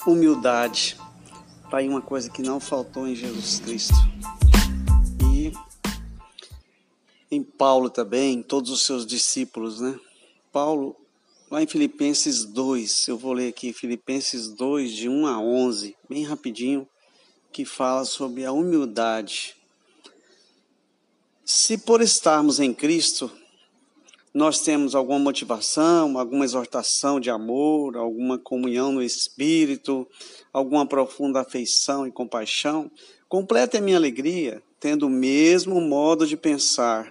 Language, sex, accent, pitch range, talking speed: Portuguese, male, Brazilian, 125-175 Hz, 120 wpm